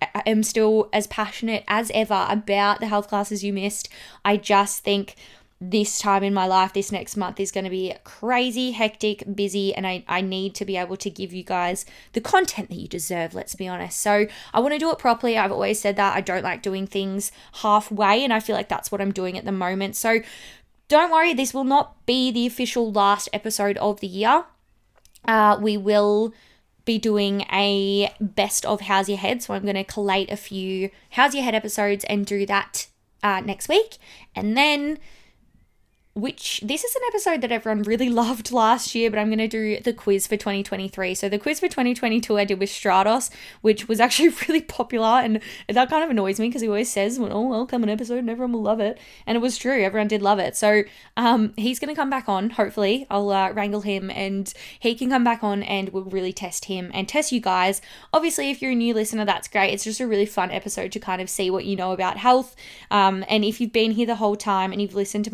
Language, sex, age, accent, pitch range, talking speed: English, female, 20-39, Australian, 195-235 Hz, 230 wpm